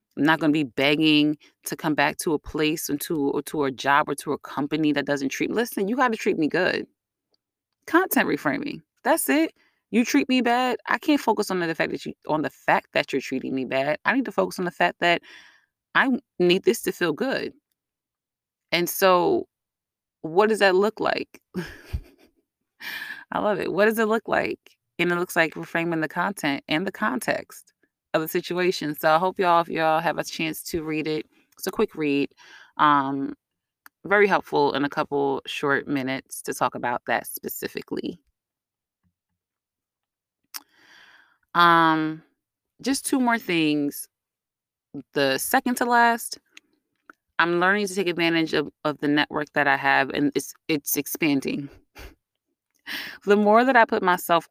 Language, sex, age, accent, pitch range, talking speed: English, female, 20-39, American, 145-215 Hz, 175 wpm